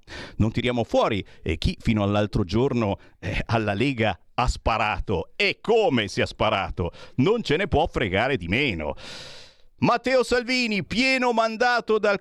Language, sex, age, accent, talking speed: Italian, male, 50-69, native, 150 wpm